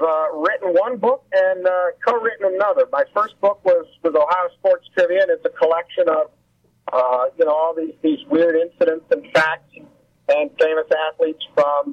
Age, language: 50-69, English